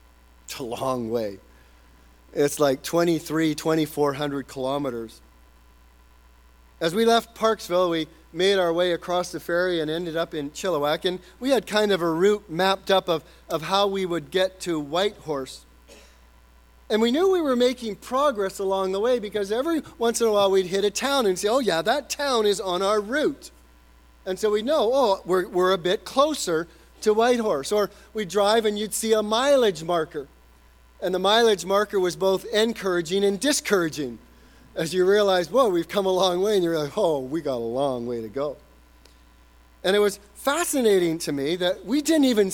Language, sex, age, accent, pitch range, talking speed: English, male, 40-59, American, 125-210 Hz, 185 wpm